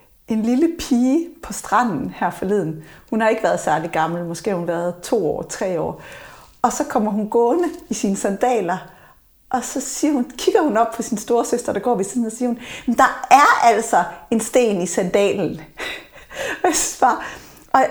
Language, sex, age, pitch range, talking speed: Danish, female, 40-59, 205-270 Hz, 180 wpm